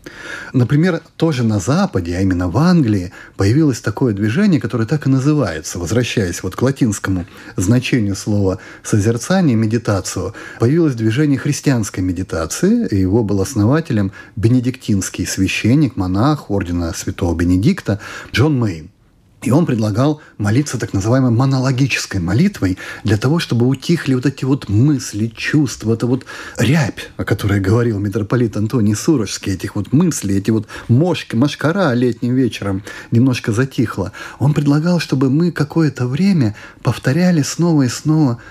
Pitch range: 105-150 Hz